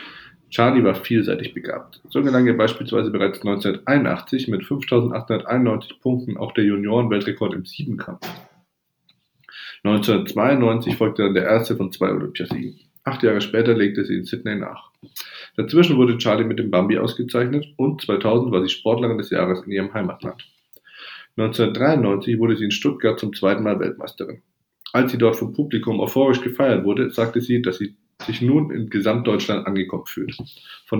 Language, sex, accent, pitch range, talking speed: German, male, German, 100-120 Hz, 150 wpm